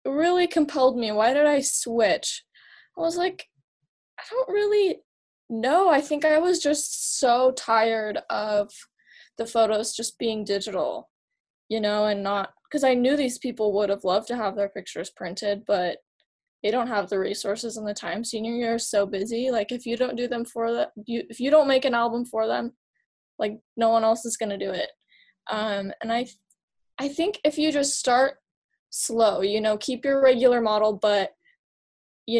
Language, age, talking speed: English, 10-29, 190 wpm